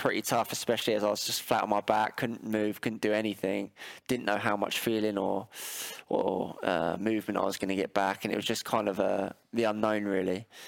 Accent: British